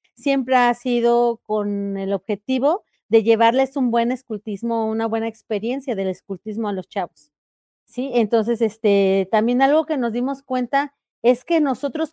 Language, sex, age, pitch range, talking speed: Spanish, female, 40-59, 210-275 Hz, 155 wpm